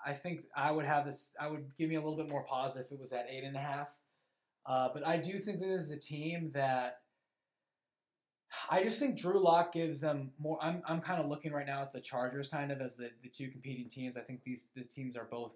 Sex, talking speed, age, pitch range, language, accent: male, 255 wpm, 20-39, 120-145 Hz, English, American